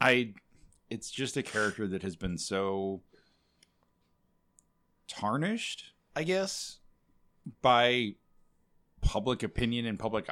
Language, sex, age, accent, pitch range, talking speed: English, male, 30-49, American, 95-120 Hz, 100 wpm